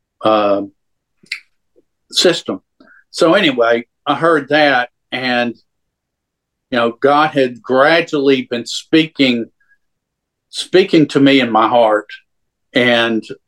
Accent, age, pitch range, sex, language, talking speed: American, 50-69, 115-135 Hz, male, English, 100 wpm